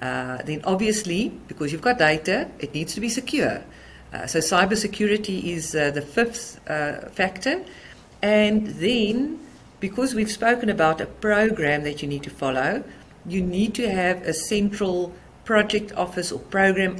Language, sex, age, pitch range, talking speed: English, female, 50-69, 145-200 Hz, 155 wpm